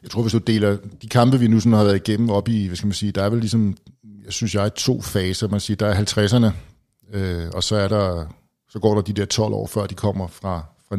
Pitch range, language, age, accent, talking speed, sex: 95-110 Hz, Danish, 60-79, native, 280 wpm, male